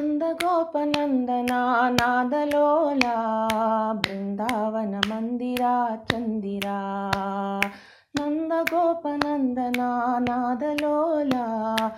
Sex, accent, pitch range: female, native, 205-295 Hz